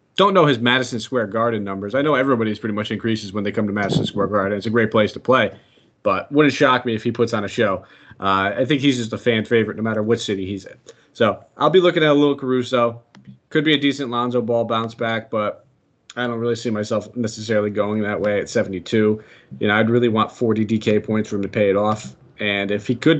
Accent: American